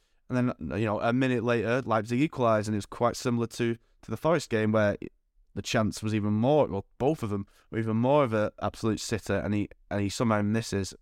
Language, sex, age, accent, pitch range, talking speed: English, male, 20-39, British, 100-120 Hz, 230 wpm